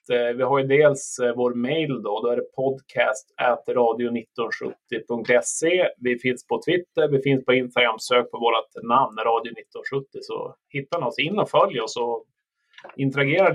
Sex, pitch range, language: male, 125-155 Hz, Swedish